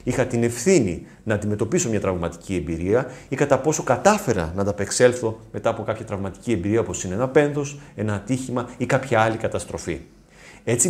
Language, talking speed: Greek, 170 wpm